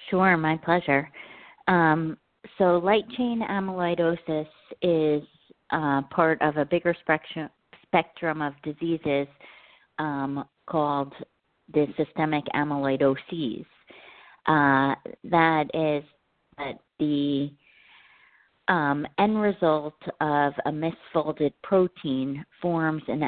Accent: American